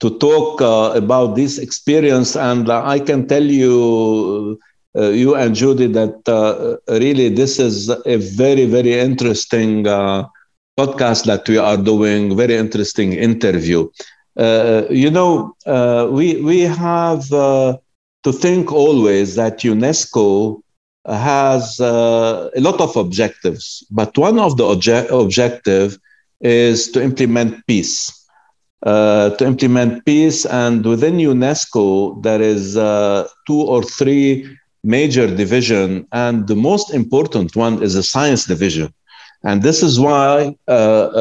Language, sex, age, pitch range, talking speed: English, male, 50-69, 105-135 Hz, 135 wpm